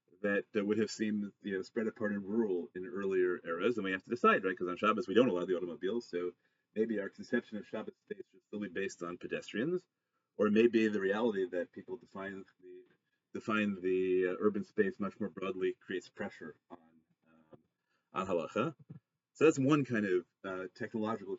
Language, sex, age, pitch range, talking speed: English, male, 30-49, 95-120 Hz, 190 wpm